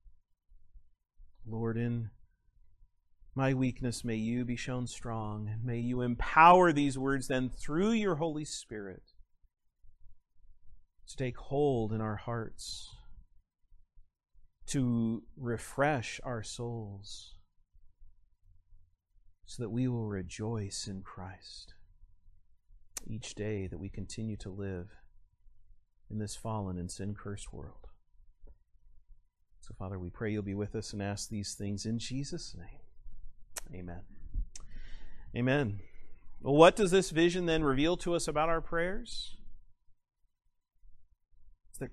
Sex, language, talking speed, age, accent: male, English, 115 wpm, 40-59, American